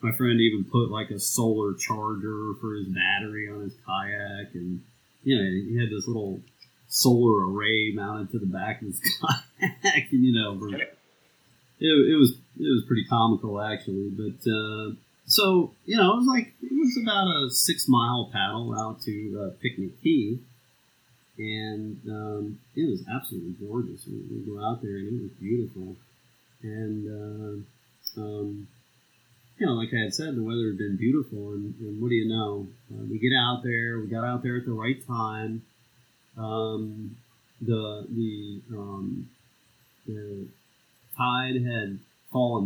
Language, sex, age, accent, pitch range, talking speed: English, male, 30-49, American, 105-120 Hz, 165 wpm